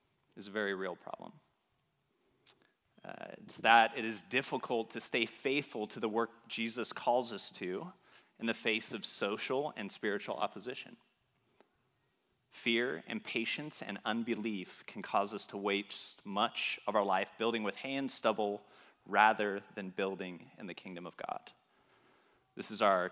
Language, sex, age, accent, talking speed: English, male, 30-49, American, 150 wpm